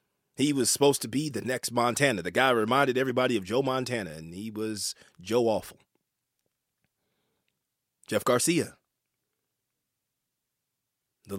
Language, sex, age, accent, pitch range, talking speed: English, male, 30-49, American, 110-130 Hz, 120 wpm